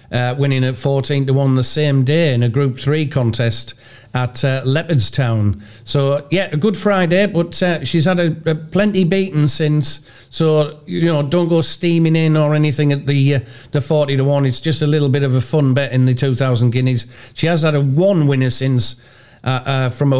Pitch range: 120-145 Hz